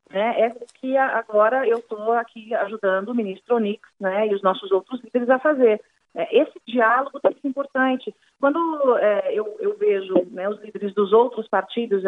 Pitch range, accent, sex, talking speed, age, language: 205-270 Hz, Brazilian, female, 170 wpm, 40-59, Portuguese